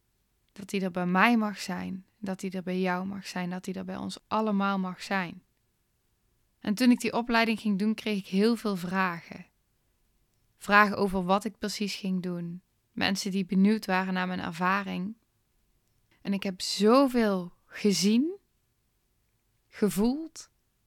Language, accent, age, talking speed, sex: Dutch, Dutch, 10-29, 155 wpm, female